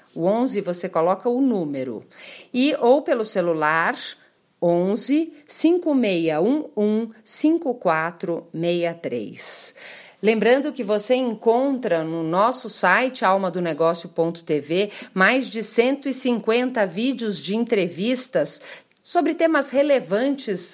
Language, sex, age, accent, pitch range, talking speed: Portuguese, female, 40-59, Brazilian, 180-250 Hz, 80 wpm